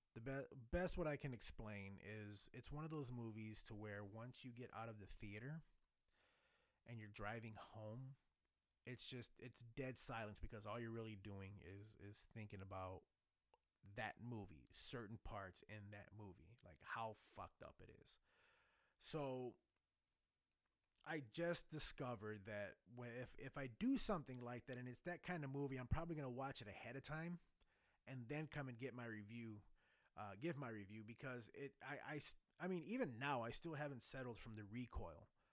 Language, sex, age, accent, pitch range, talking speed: English, male, 30-49, American, 105-145 Hz, 180 wpm